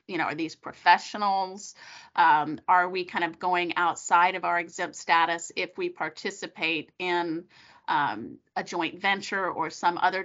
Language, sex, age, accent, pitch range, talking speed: English, female, 30-49, American, 165-190 Hz, 160 wpm